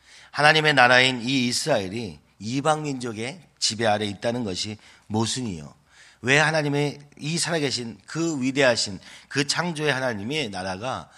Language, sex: Korean, male